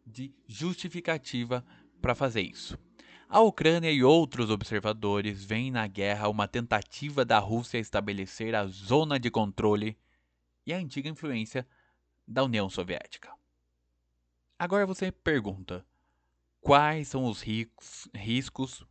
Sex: male